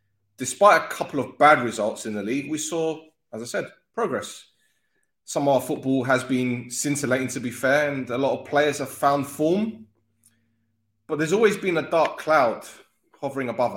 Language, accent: English, British